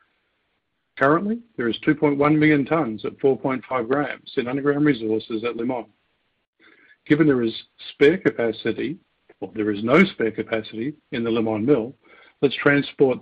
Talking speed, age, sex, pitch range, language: 140 wpm, 50-69, male, 115-145 Hz, English